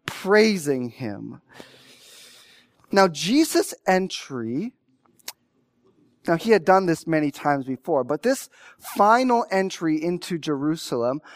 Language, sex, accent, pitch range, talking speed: English, male, American, 150-205 Hz, 90 wpm